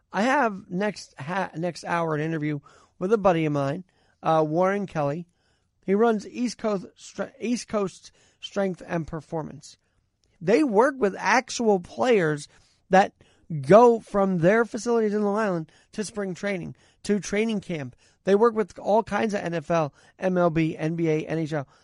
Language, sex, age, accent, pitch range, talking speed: English, male, 40-59, American, 140-210 Hz, 145 wpm